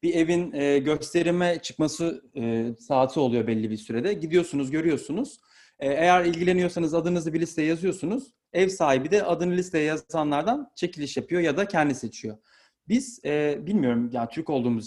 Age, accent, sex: 40-59, native, male